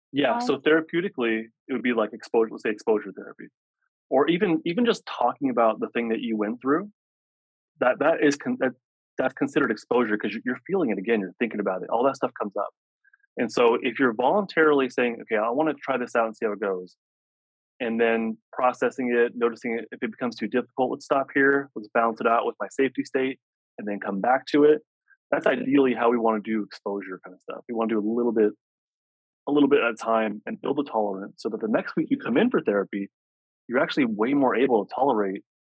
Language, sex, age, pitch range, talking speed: English, male, 30-49, 110-145 Hz, 225 wpm